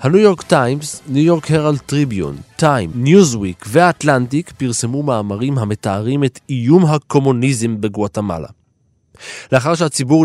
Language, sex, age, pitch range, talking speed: Hebrew, male, 20-39, 110-155 Hz, 110 wpm